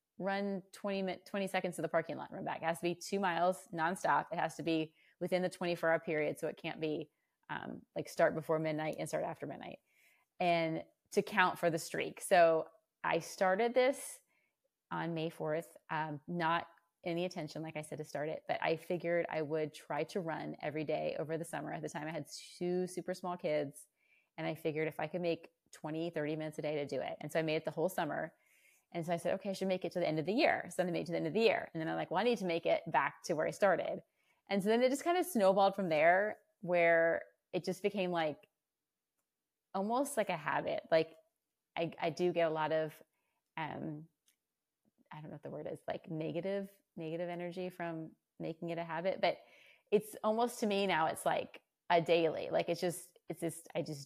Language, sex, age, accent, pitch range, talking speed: English, female, 30-49, American, 160-185 Hz, 230 wpm